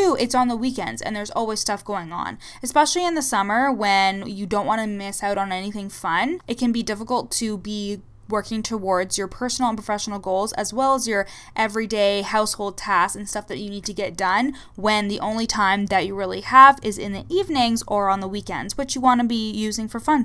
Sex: female